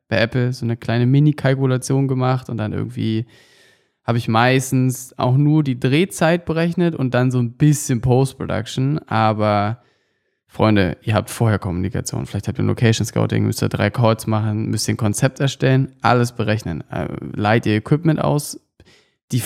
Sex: male